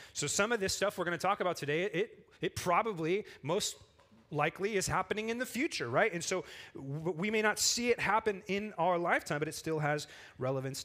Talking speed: 210 wpm